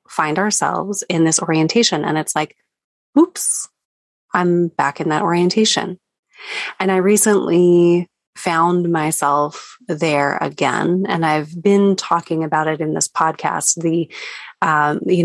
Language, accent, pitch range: English, American, 165-205 Hz